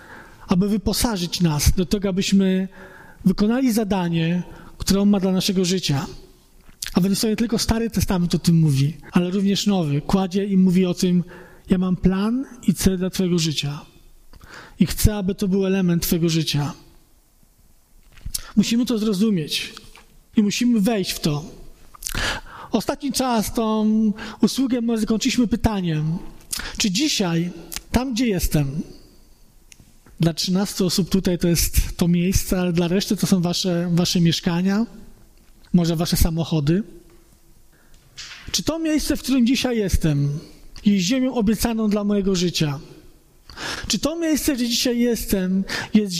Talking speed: 140 wpm